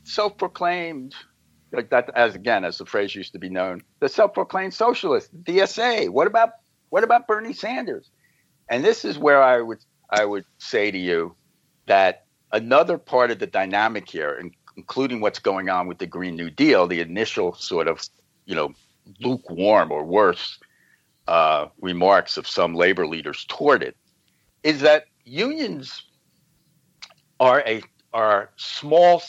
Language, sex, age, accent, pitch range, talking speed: English, male, 60-79, American, 100-165 Hz, 150 wpm